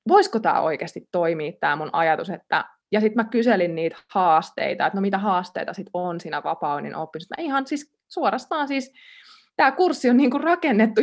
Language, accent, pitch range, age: Finnish, native, 175-240 Hz, 20-39